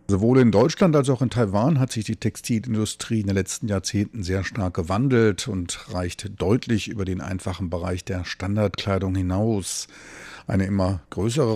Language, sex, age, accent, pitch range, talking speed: German, male, 50-69, German, 90-105 Hz, 160 wpm